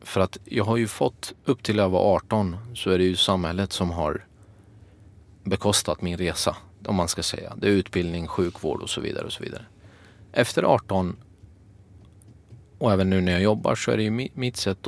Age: 30-49